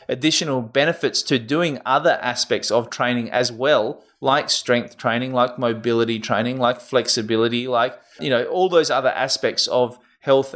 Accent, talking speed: Australian, 155 wpm